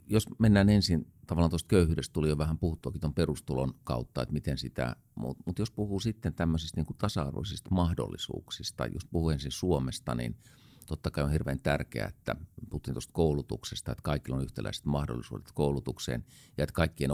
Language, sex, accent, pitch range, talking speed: Finnish, male, native, 70-100 Hz, 170 wpm